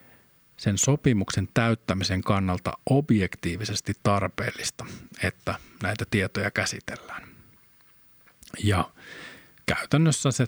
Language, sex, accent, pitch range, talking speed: Finnish, male, native, 95-115 Hz, 70 wpm